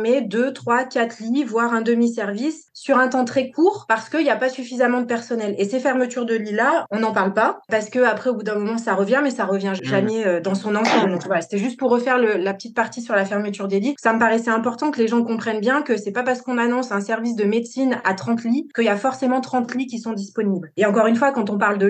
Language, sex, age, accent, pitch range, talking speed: French, female, 20-39, French, 205-245 Hz, 280 wpm